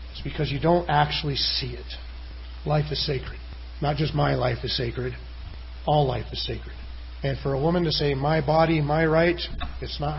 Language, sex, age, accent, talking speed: English, male, 40-59, American, 185 wpm